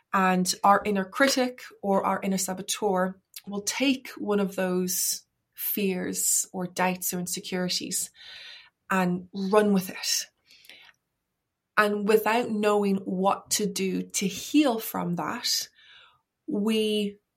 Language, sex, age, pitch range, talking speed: English, female, 20-39, 185-215 Hz, 115 wpm